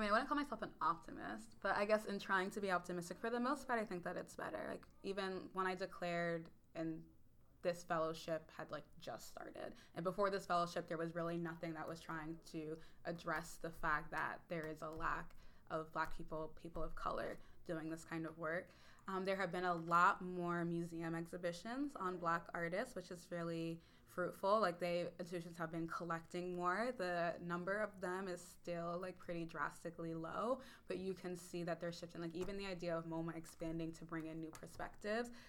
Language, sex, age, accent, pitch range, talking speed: English, female, 20-39, American, 165-185 Hz, 205 wpm